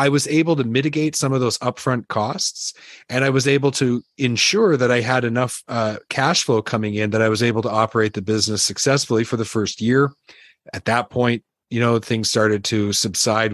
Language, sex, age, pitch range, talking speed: English, male, 30-49, 110-135 Hz, 205 wpm